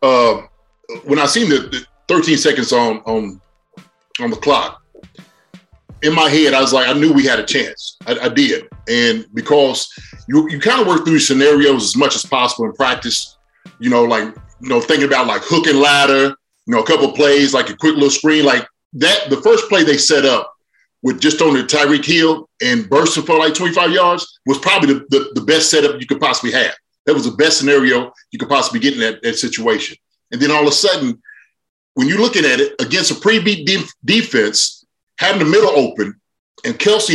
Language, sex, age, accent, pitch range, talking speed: English, male, 30-49, American, 140-225 Hz, 210 wpm